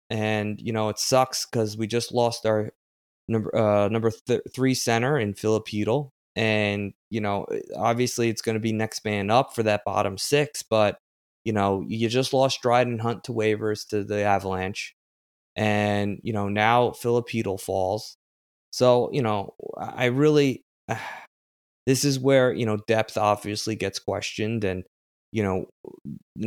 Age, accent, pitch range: 20-39, American, 100-120 Hz